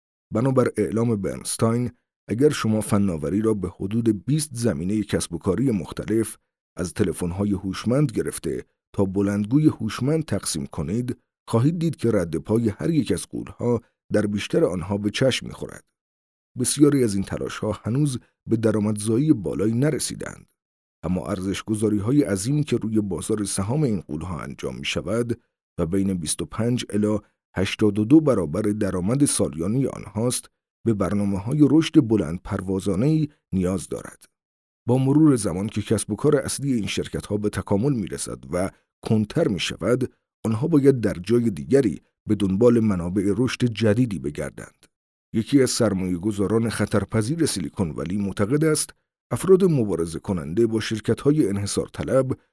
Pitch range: 100-125 Hz